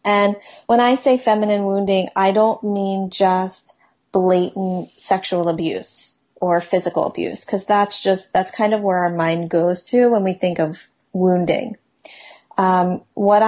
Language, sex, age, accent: English, female, 30-49, American